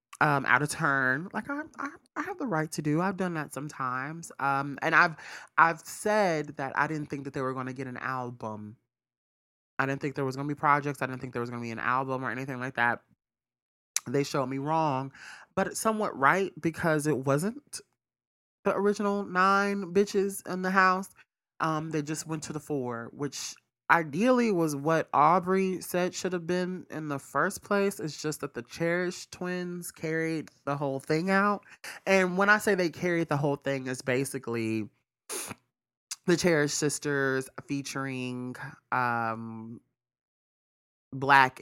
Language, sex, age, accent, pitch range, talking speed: English, male, 20-39, American, 130-175 Hz, 175 wpm